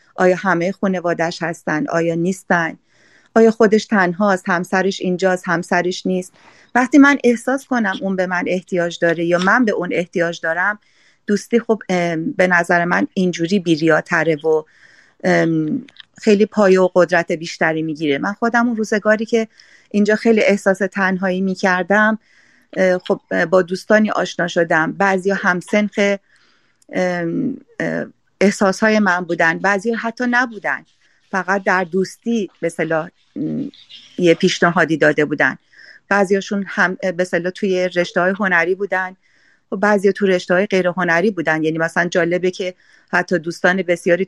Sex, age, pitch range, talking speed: female, 40-59, 175-205 Hz, 135 wpm